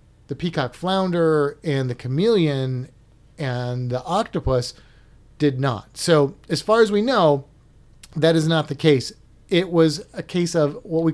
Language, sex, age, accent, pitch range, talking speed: English, male, 30-49, American, 130-175 Hz, 155 wpm